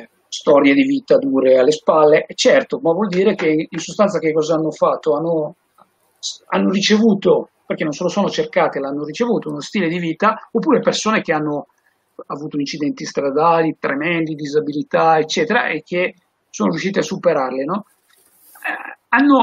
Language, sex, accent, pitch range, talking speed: Italian, male, native, 160-215 Hz, 155 wpm